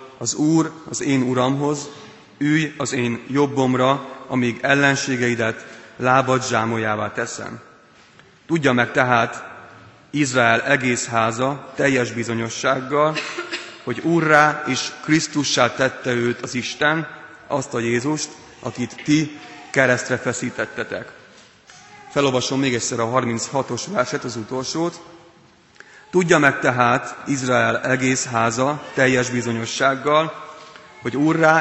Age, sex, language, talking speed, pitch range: 30-49, male, Hungarian, 105 wpm, 120-150 Hz